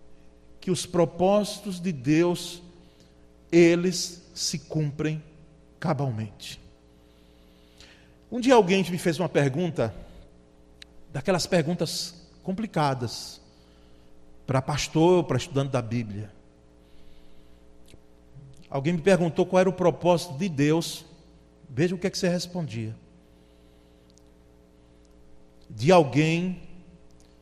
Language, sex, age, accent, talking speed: Portuguese, male, 40-59, Brazilian, 95 wpm